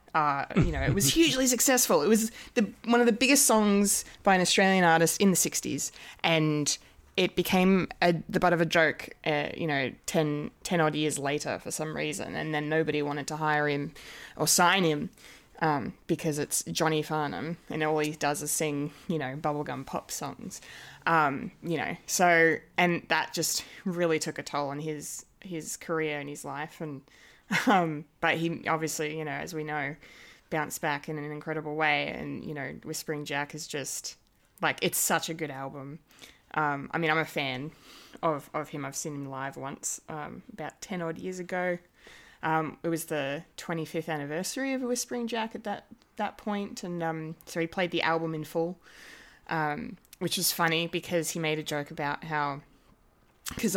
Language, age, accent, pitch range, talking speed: English, 20-39, Australian, 150-180 Hz, 190 wpm